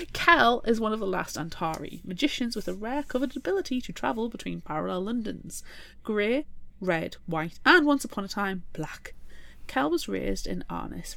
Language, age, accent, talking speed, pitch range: English, 30-49, British, 170 wpm, 170-255 Hz